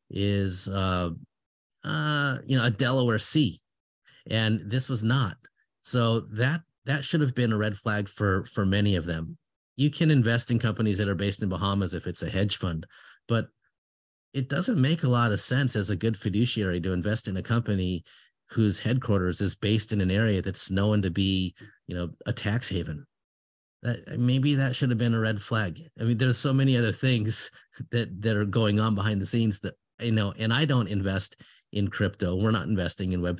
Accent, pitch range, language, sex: American, 95-120 Hz, English, male